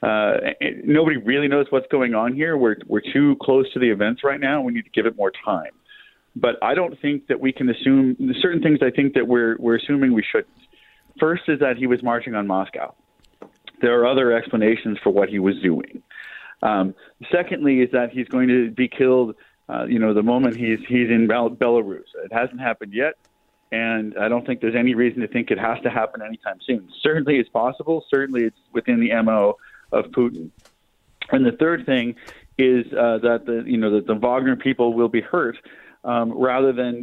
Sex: male